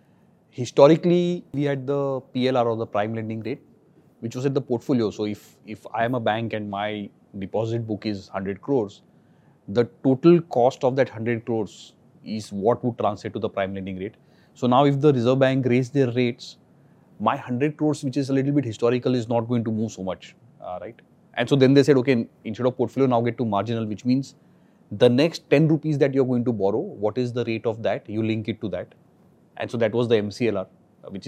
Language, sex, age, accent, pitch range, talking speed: English, male, 30-49, Indian, 105-130 Hz, 215 wpm